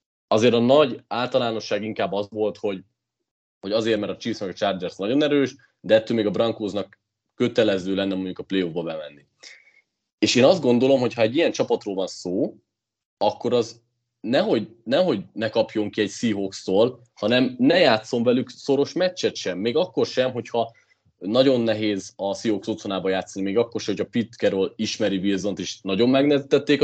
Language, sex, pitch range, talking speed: Hungarian, male, 100-130 Hz, 170 wpm